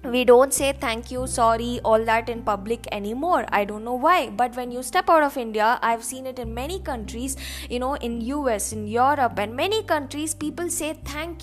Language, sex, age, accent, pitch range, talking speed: English, female, 20-39, Indian, 235-320 Hz, 210 wpm